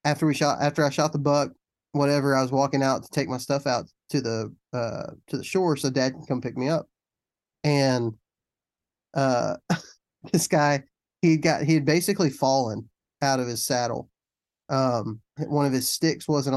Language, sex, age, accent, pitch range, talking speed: English, male, 20-39, American, 125-150 Hz, 190 wpm